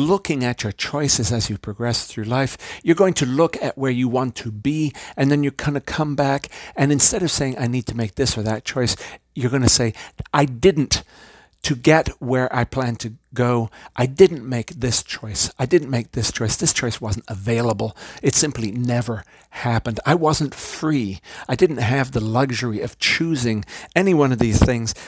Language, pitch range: English, 115-145 Hz